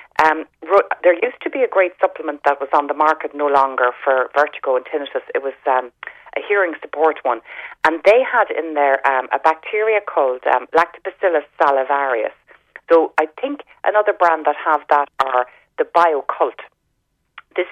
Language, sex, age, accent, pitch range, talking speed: English, female, 40-59, Irish, 135-180 Hz, 175 wpm